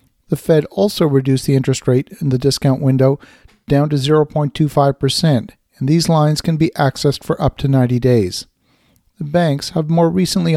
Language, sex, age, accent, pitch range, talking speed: English, male, 50-69, American, 135-160 Hz, 170 wpm